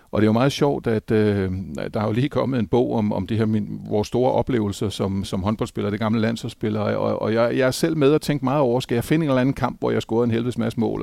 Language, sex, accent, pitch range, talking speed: Danish, male, native, 110-140 Hz, 280 wpm